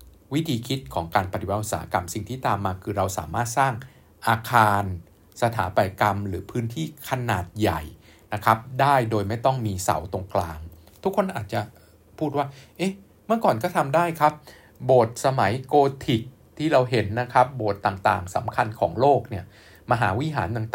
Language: Thai